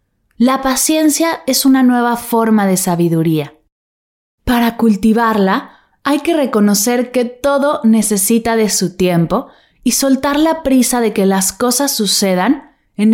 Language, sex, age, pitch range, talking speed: Spanish, female, 20-39, 195-255 Hz, 130 wpm